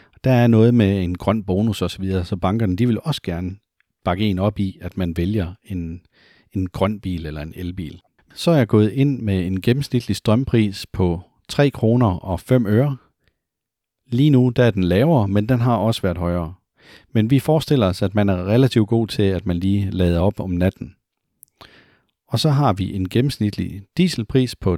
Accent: native